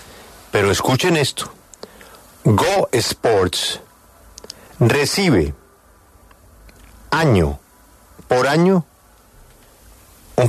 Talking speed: 55 wpm